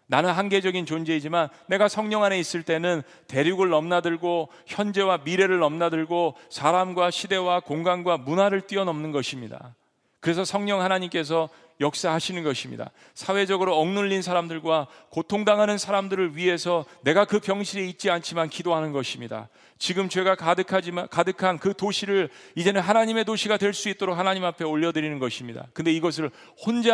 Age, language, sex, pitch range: 40-59, Korean, male, 120-185 Hz